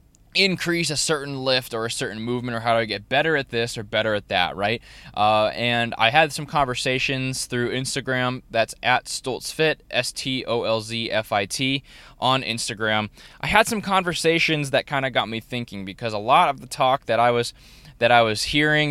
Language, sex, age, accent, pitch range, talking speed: English, male, 20-39, American, 110-135 Hz, 185 wpm